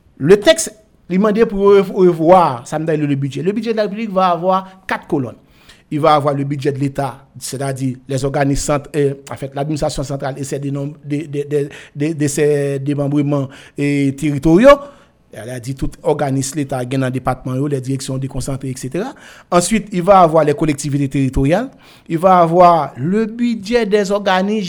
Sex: male